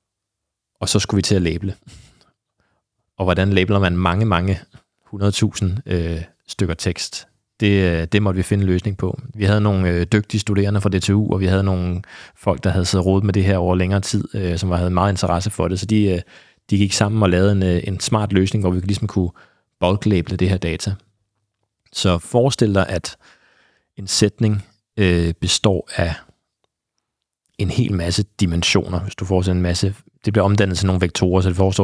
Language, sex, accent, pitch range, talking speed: Danish, male, native, 90-105 Hz, 190 wpm